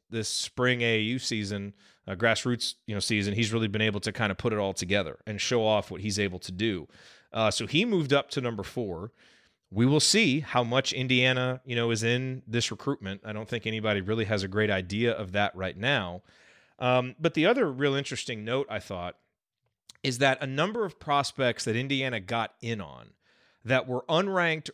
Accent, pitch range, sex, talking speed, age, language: American, 110-150 Hz, male, 205 wpm, 30-49, English